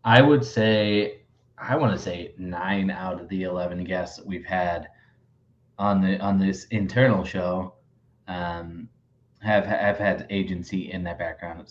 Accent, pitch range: American, 95-120 Hz